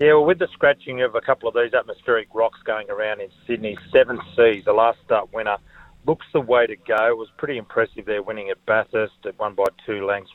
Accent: Australian